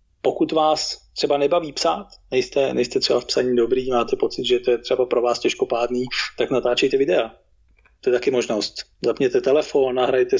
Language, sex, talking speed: Slovak, male, 175 wpm